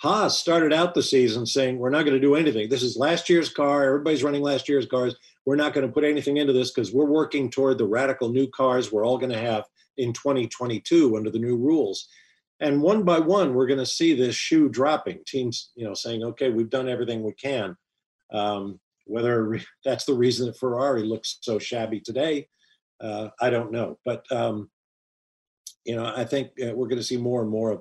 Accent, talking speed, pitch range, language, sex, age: American, 215 wpm, 115-145 Hz, English, male, 50-69